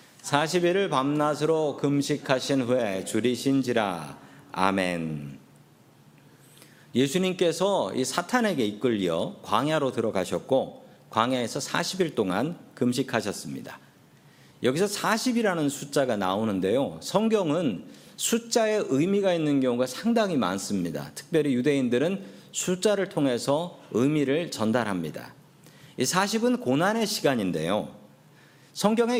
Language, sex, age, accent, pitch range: Korean, male, 40-59, native, 125-200 Hz